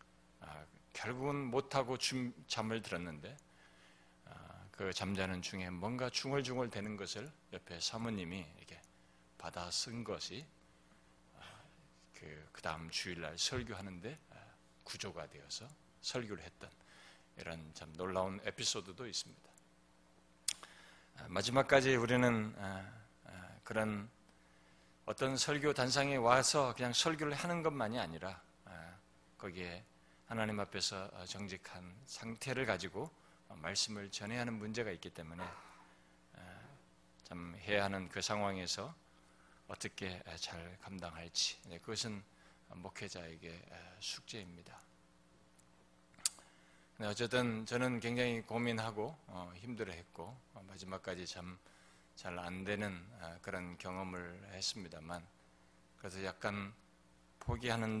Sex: male